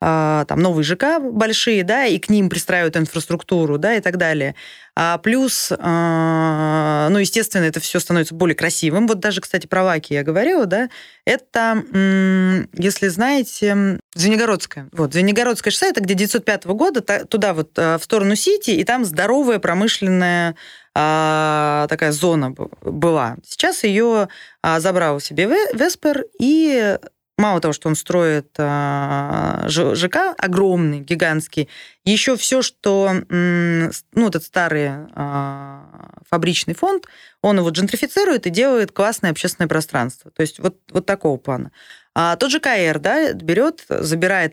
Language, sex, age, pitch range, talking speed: Russian, female, 20-39, 160-215 Hz, 130 wpm